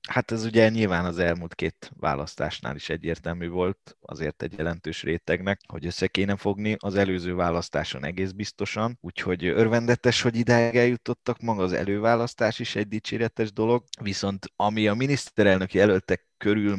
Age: 20-39